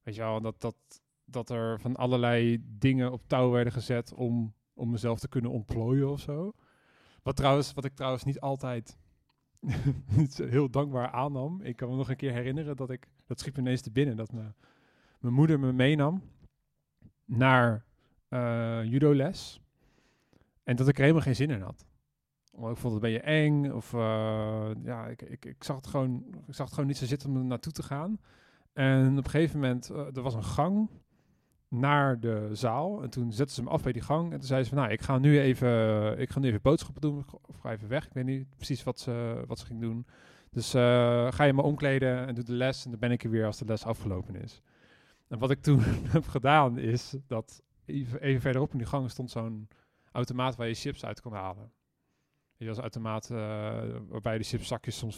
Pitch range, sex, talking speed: 115-140 Hz, male, 215 wpm